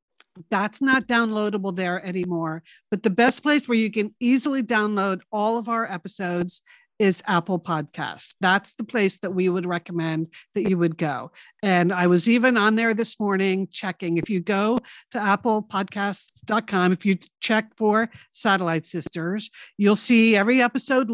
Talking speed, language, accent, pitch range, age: 160 wpm, English, American, 185-235 Hz, 50-69